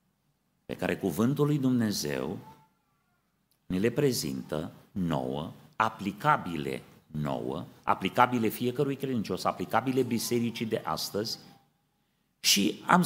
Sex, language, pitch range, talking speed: male, Romanian, 110-170 Hz, 90 wpm